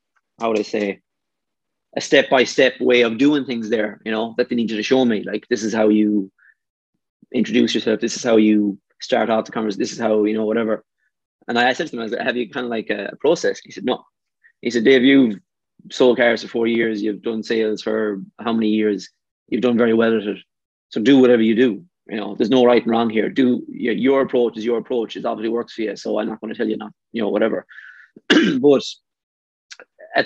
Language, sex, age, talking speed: English, male, 20-39, 240 wpm